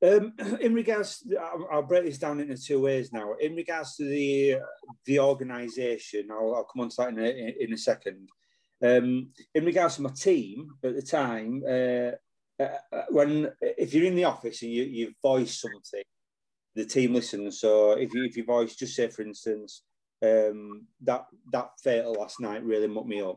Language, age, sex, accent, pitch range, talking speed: English, 30-49, male, British, 110-145 Hz, 195 wpm